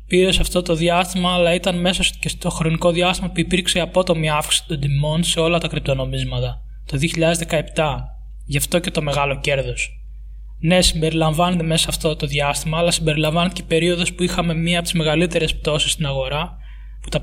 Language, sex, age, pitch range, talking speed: Greek, male, 20-39, 150-175 Hz, 180 wpm